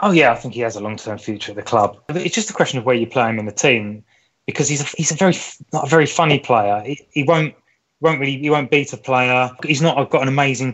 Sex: male